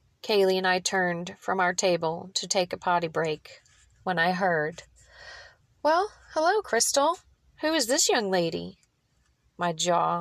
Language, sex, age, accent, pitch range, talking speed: English, female, 30-49, American, 155-185 Hz, 145 wpm